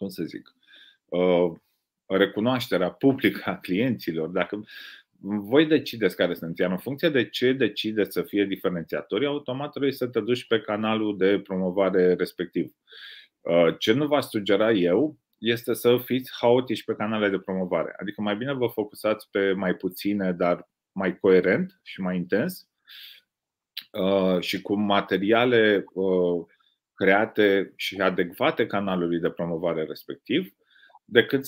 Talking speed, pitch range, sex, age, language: 135 wpm, 95-120 Hz, male, 30-49, Romanian